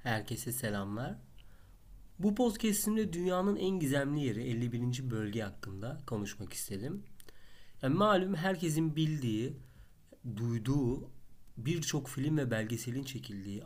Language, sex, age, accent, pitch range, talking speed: Turkish, male, 40-59, native, 105-140 Hz, 100 wpm